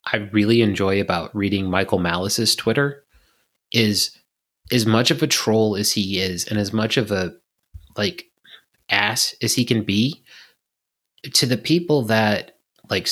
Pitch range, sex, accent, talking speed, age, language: 100-115 Hz, male, American, 150 wpm, 30-49, English